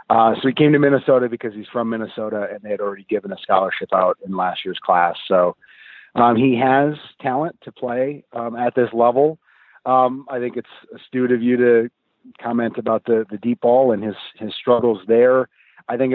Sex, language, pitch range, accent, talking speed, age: male, English, 115-130 Hz, American, 200 wpm, 40-59